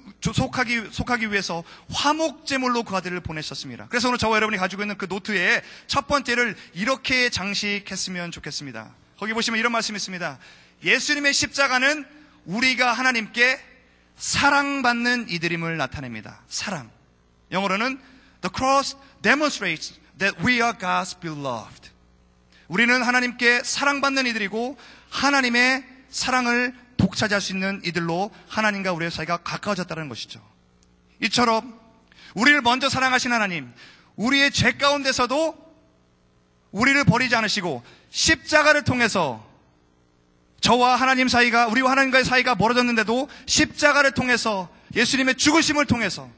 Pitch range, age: 180-260 Hz, 30-49